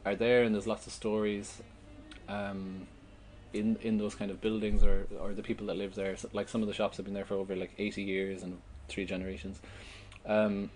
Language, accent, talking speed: English, Irish, 220 wpm